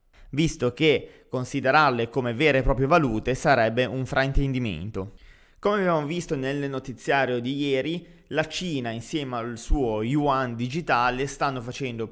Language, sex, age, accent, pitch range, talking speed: Italian, male, 20-39, native, 125-155 Hz, 135 wpm